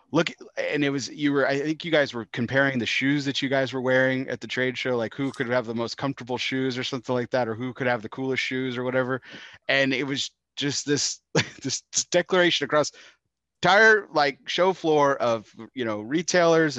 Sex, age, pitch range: male, 30-49, 120-150 Hz